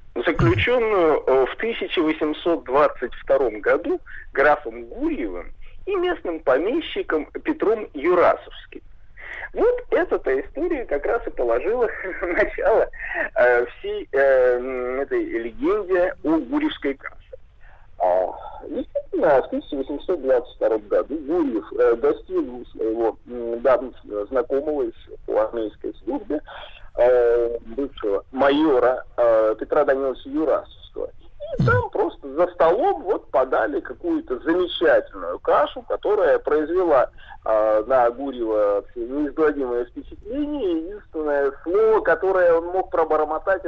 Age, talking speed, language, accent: 50-69, 85 wpm, Russian, native